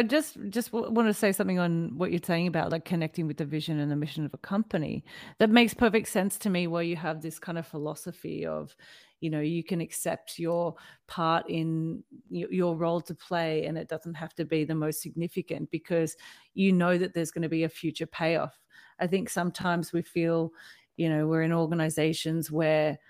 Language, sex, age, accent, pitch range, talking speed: English, female, 30-49, Australian, 160-185 Hz, 205 wpm